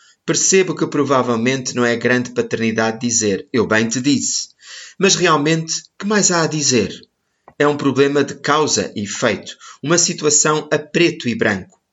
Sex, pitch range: male, 120-160 Hz